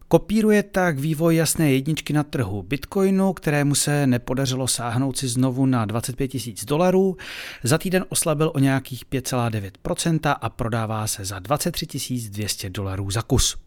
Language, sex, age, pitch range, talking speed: Czech, male, 40-59, 115-150 Hz, 145 wpm